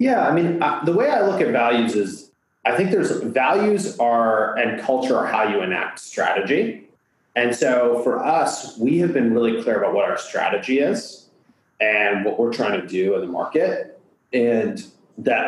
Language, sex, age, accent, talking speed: English, male, 30-49, American, 180 wpm